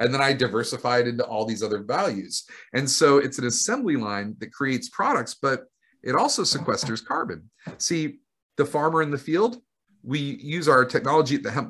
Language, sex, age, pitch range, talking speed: English, male, 40-59, 100-125 Hz, 185 wpm